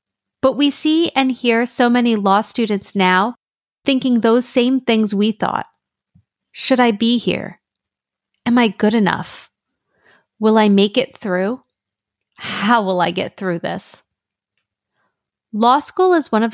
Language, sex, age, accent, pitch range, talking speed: English, female, 30-49, American, 205-265 Hz, 145 wpm